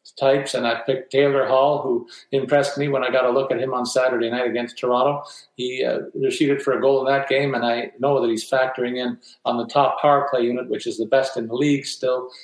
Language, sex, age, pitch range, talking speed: English, male, 50-69, 130-150 Hz, 250 wpm